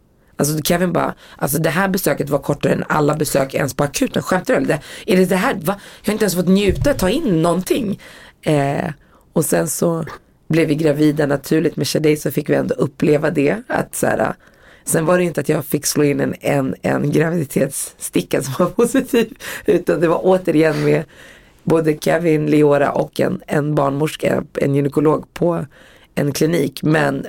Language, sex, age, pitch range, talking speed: Swedish, female, 30-49, 145-175 Hz, 185 wpm